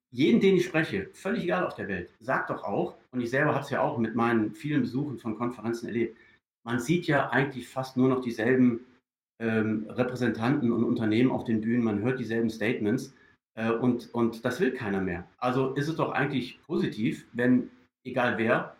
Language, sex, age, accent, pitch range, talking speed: German, male, 40-59, German, 115-130 Hz, 195 wpm